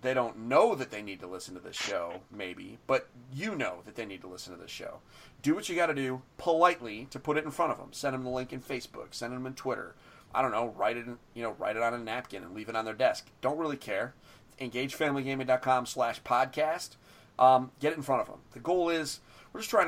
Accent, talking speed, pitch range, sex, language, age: American, 260 wpm, 115-140 Hz, male, English, 30-49